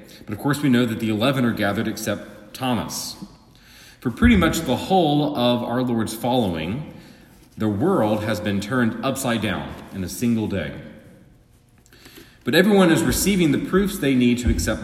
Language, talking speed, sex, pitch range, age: English, 170 wpm, male, 110-145 Hz, 40-59